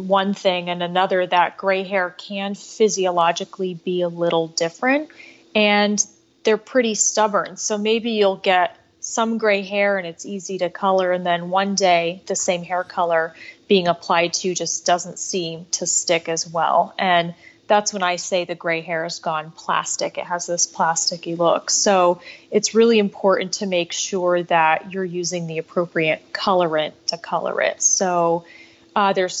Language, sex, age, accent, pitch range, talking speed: English, female, 30-49, American, 175-200 Hz, 165 wpm